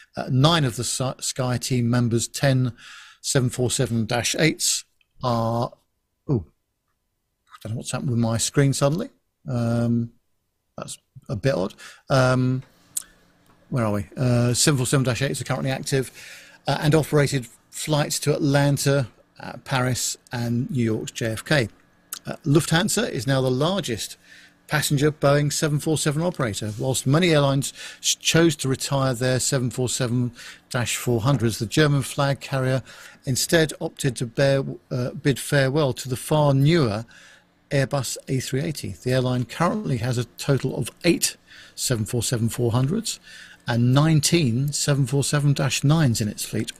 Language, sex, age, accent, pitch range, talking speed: English, male, 50-69, British, 120-145 Hz, 125 wpm